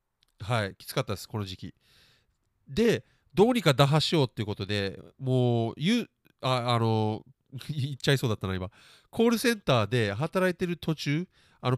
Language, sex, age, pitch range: Japanese, male, 40-59, 110-160 Hz